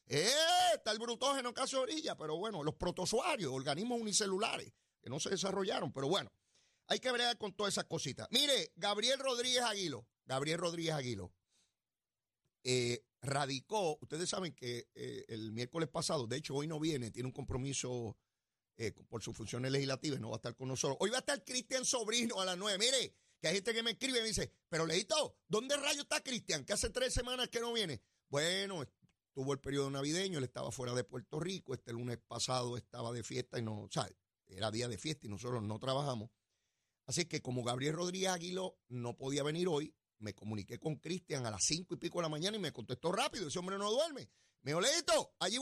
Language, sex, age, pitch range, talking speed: Spanish, male, 40-59, 120-195 Hz, 205 wpm